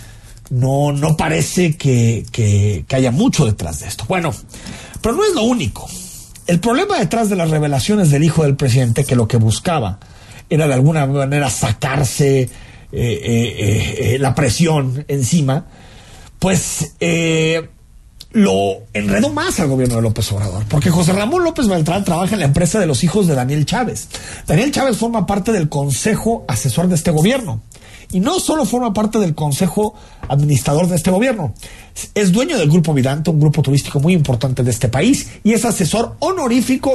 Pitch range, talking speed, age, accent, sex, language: 125-185 Hz, 170 wpm, 40-59, Mexican, male, Spanish